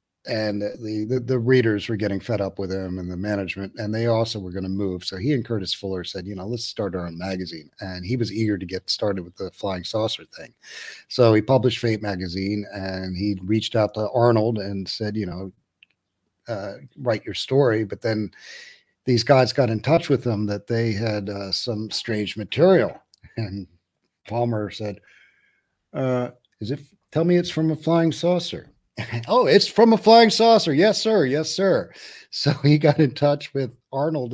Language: English